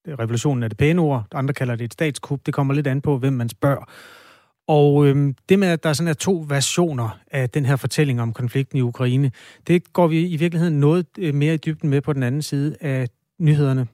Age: 30-49